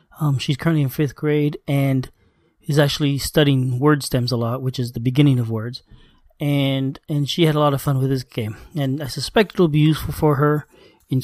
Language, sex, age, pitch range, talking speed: English, male, 30-49, 135-165 Hz, 220 wpm